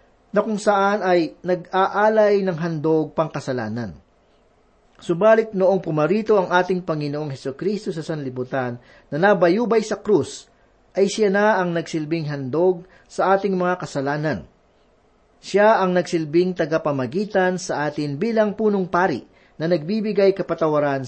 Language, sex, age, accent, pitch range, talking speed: Filipino, male, 40-59, native, 155-195 Hz, 125 wpm